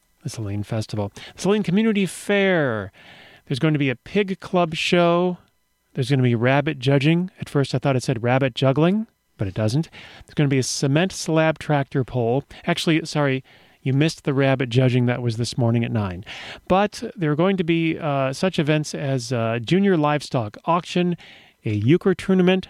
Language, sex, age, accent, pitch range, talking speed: English, male, 40-59, American, 130-170 Hz, 190 wpm